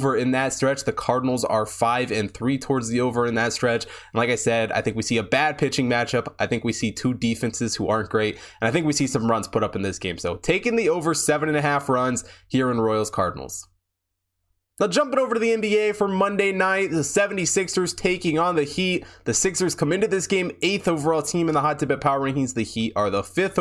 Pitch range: 125-155 Hz